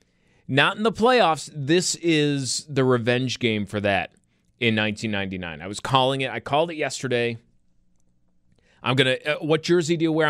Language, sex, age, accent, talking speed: English, male, 30-49, American, 170 wpm